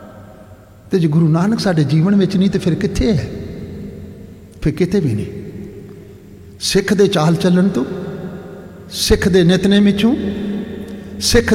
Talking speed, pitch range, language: 130 wpm, 150-240 Hz, Punjabi